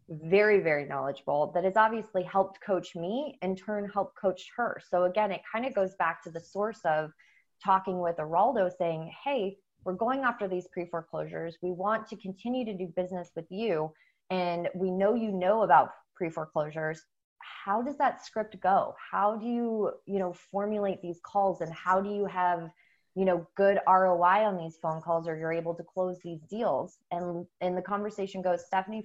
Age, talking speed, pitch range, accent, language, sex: 20-39, 190 wpm, 170-200 Hz, American, English, female